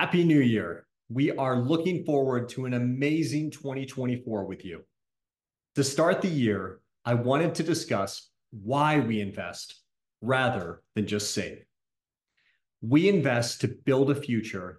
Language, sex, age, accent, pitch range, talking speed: English, male, 40-59, American, 110-145 Hz, 140 wpm